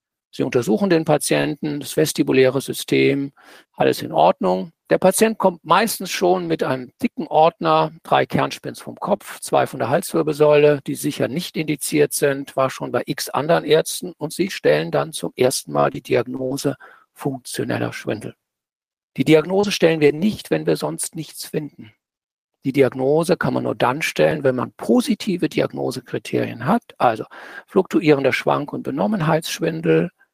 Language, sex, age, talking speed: German, male, 50-69, 150 wpm